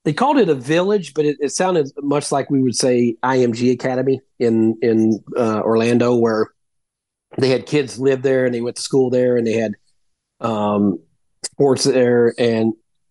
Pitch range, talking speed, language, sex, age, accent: 115-135 Hz, 180 wpm, English, male, 40-59, American